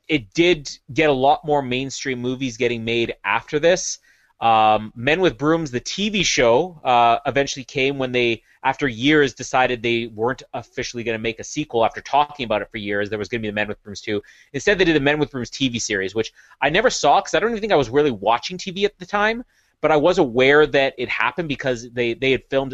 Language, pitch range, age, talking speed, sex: English, 115-145 Hz, 30-49, 235 wpm, male